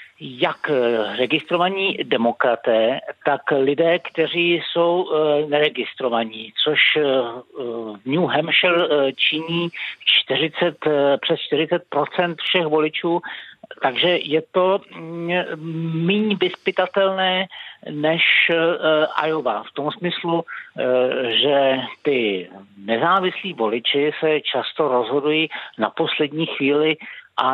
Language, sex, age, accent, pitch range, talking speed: Czech, male, 60-79, native, 125-165 Hz, 85 wpm